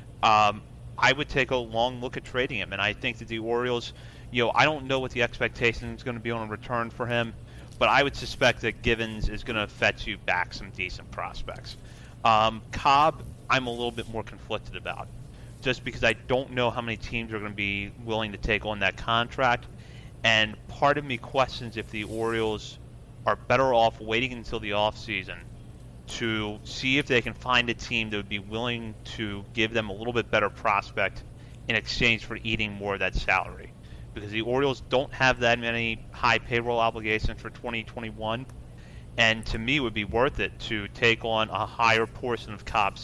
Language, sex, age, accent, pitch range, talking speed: English, male, 30-49, American, 110-120 Hz, 205 wpm